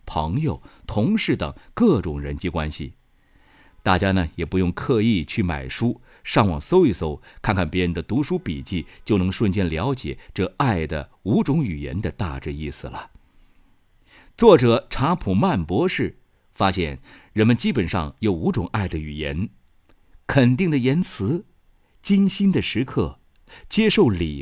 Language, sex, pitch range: Chinese, male, 80-120 Hz